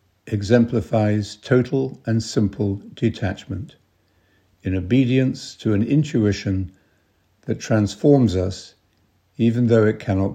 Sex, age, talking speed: male, 60-79, 100 wpm